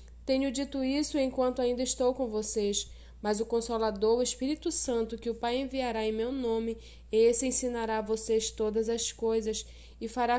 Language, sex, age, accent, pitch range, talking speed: Portuguese, female, 10-29, Brazilian, 220-260 Hz, 175 wpm